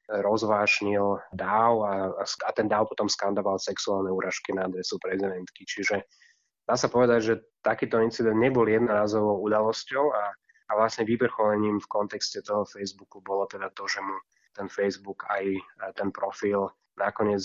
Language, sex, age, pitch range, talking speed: Slovak, male, 20-39, 100-110 Hz, 150 wpm